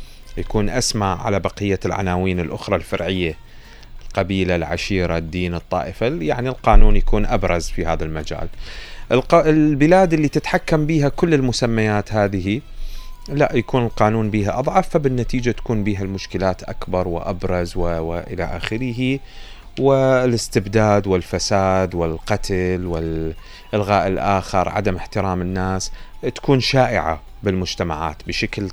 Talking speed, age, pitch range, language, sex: 105 wpm, 30-49, 90-120 Hz, Arabic, male